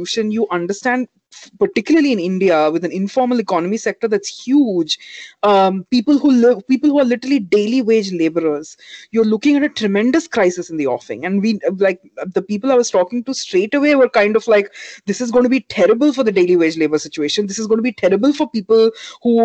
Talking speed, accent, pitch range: 215 wpm, Indian, 185-250 Hz